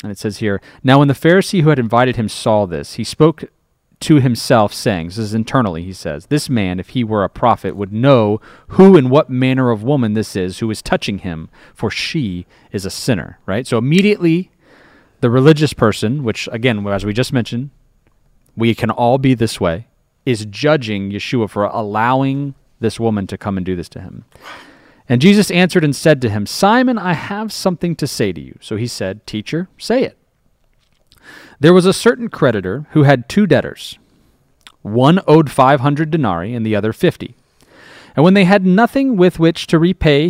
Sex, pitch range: male, 105-155 Hz